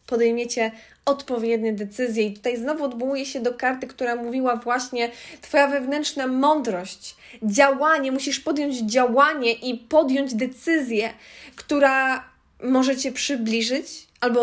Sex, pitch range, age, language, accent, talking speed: female, 220-275 Hz, 20-39, English, Polish, 115 wpm